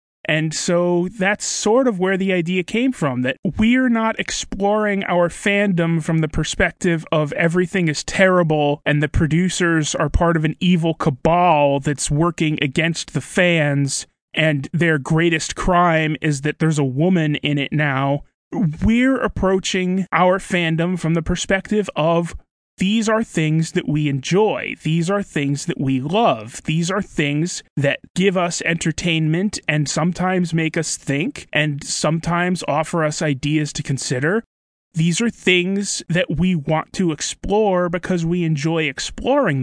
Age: 30-49